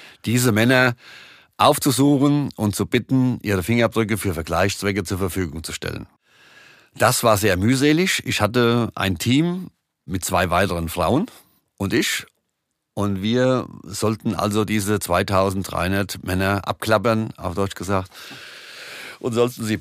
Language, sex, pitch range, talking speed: German, male, 100-125 Hz, 125 wpm